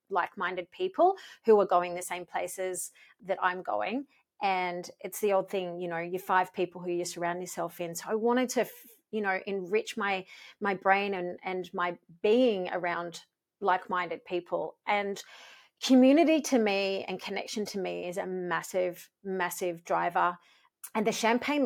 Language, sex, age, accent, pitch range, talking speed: English, female, 30-49, Australian, 190-255 Hz, 165 wpm